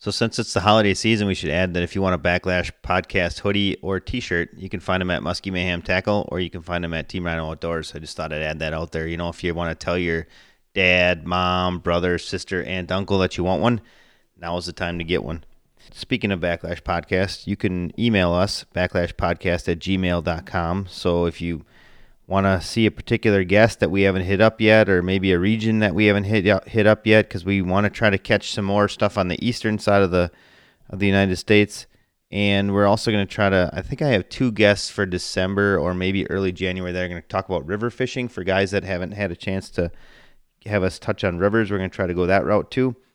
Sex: male